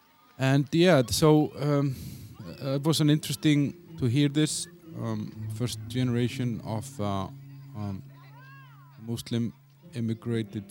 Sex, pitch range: male, 110-140 Hz